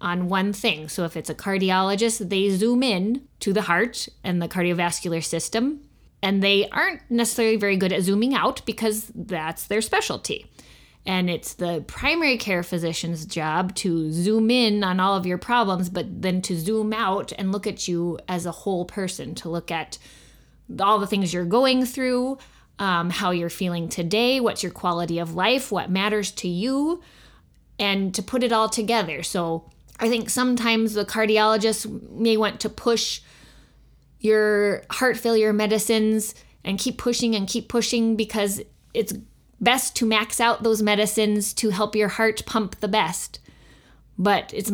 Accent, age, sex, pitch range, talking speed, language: American, 20-39, female, 185-225 Hz, 170 wpm, English